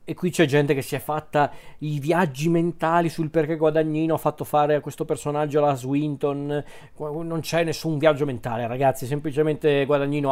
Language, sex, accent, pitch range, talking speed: Italian, male, native, 130-150 Hz, 175 wpm